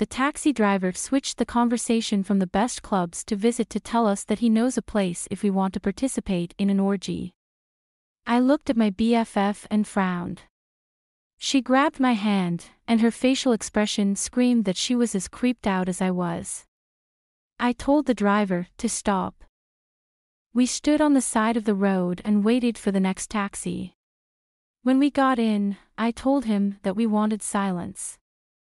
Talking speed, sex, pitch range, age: 175 wpm, female, 195-240 Hz, 30-49